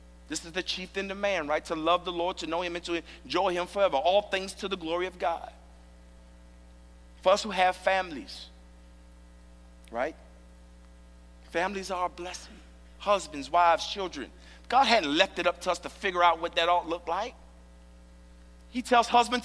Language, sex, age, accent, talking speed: English, male, 50-69, American, 180 wpm